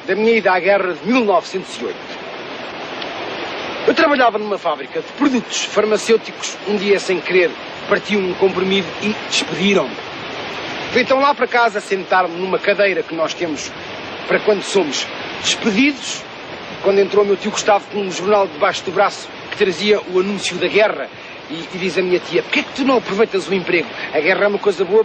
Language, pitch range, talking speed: English, 185-220 Hz, 180 wpm